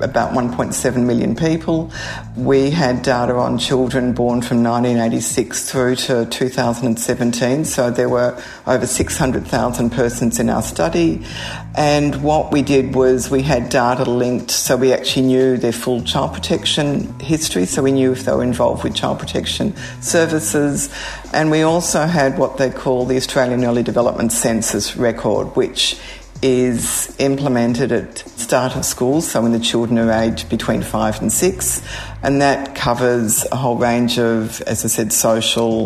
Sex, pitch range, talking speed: female, 115-135 Hz, 155 wpm